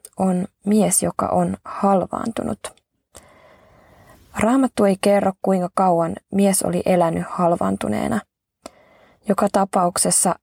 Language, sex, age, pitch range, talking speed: Finnish, female, 20-39, 165-195 Hz, 90 wpm